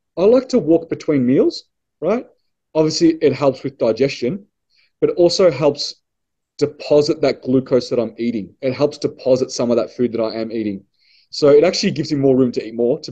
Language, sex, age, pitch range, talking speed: English, male, 30-49, 130-170 Hz, 200 wpm